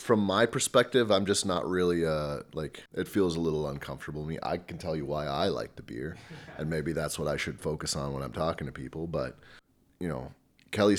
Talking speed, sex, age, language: 240 wpm, male, 30-49, English